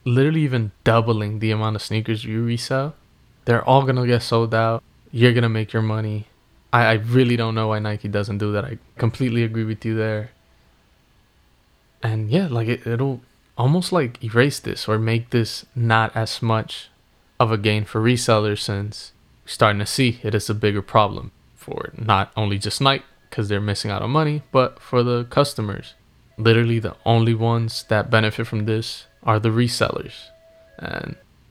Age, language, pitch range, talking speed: 20-39, English, 110-125 Hz, 175 wpm